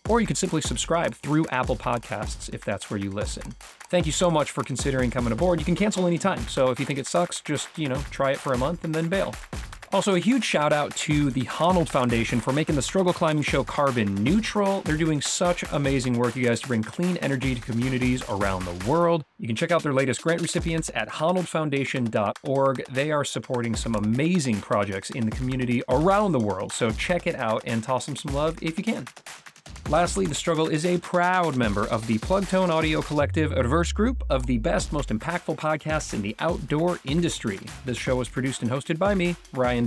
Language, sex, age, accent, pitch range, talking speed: English, male, 30-49, American, 125-175 Hz, 220 wpm